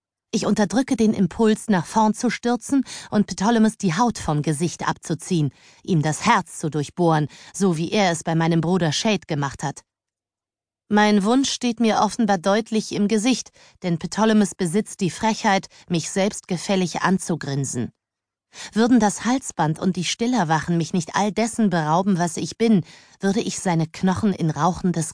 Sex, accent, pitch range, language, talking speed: female, German, 160-205 Hz, German, 160 wpm